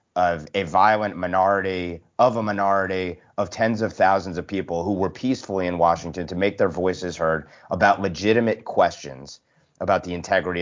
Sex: male